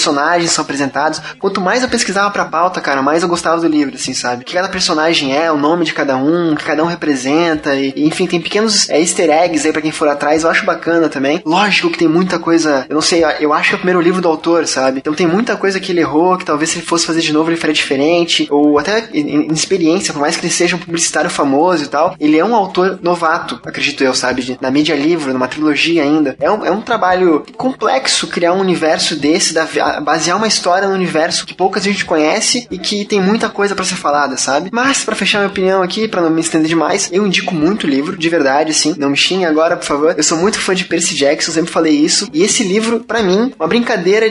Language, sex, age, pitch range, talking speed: Portuguese, male, 20-39, 155-190 Hz, 250 wpm